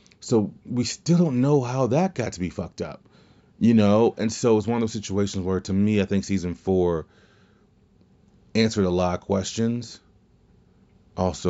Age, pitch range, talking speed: 30-49, 90-110 Hz, 175 wpm